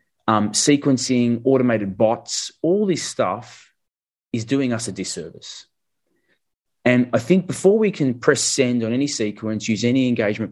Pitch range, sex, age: 105-125 Hz, male, 30-49